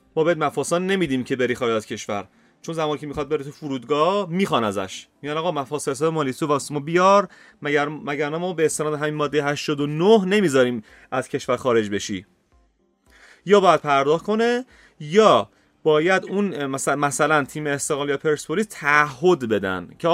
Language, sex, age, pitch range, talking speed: Persian, male, 30-49, 135-175 Hz, 175 wpm